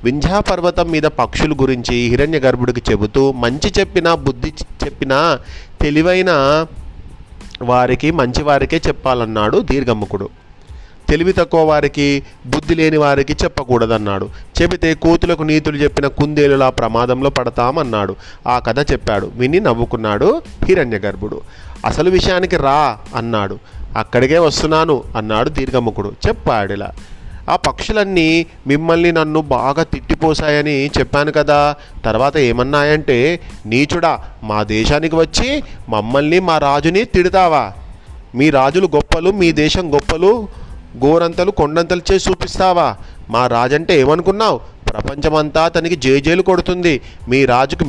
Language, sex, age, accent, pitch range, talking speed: Telugu, male, 30-49, native, 120-165 Hz, 105 wpm